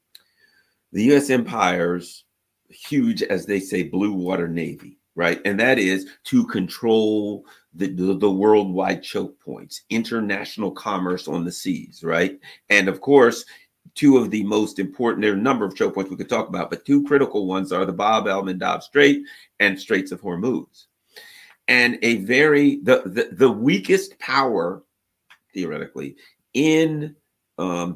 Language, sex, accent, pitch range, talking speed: English, male, American, 105-150 Hz, 155 wpm